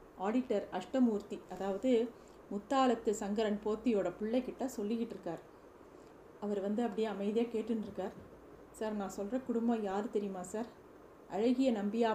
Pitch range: 205-240 Hz